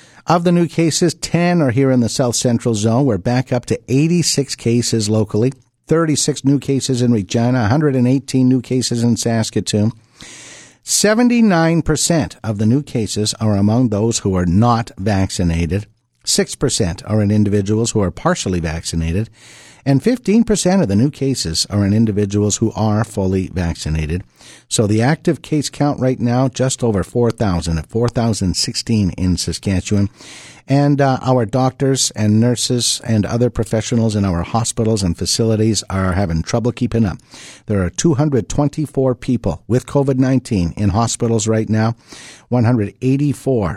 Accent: American